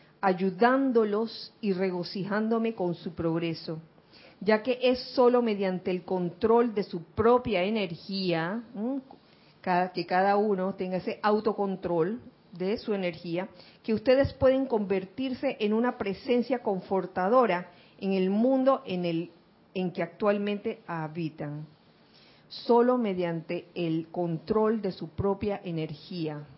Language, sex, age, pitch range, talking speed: Spanish, female, 40-59, 170-220 Hz, 115 wpm